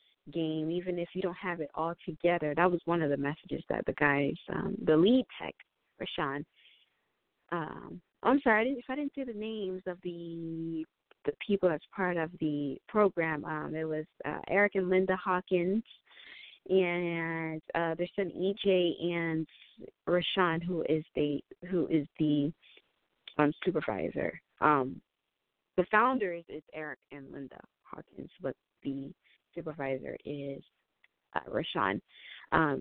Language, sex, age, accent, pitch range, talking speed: English, female, 20-39, American, 150-185 Hz, 150 wpm